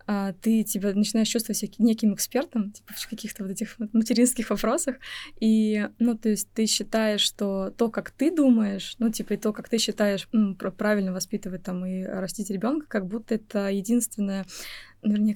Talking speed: 170 wpm